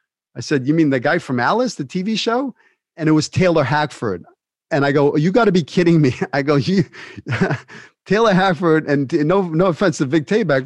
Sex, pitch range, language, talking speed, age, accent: male, 135-170 Hz, English, 215 wpm, 40-59, American